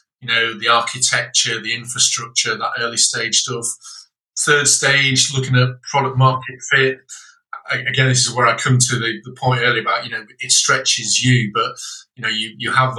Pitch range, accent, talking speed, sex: 120-130 Hz, British, 190 wpm, male